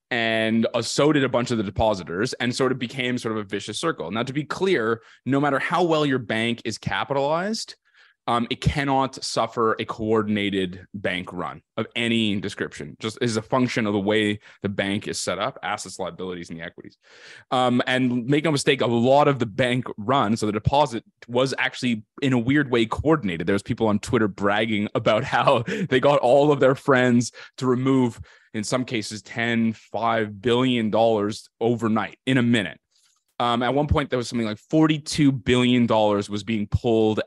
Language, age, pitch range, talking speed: English, 20-39, 105-130 Hz, 190 wpm